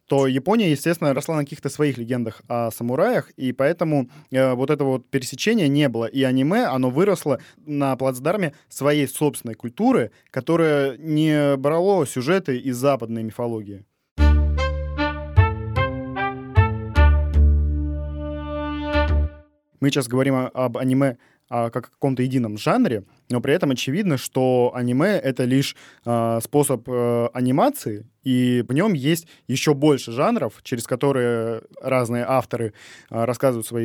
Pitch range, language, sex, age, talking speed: 120-140 Hz, Russian, male, 20-39, 120 wpm